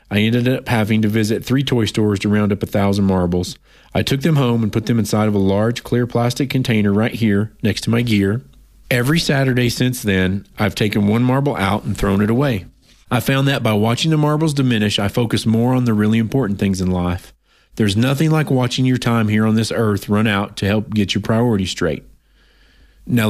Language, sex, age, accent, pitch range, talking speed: English, male, 40-59, American, 100-120 Hz, 220 wpm